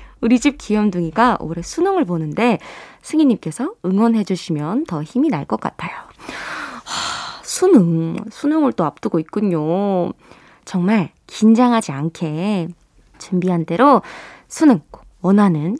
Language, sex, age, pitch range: Korean, female, 20-39, 180-265 Hz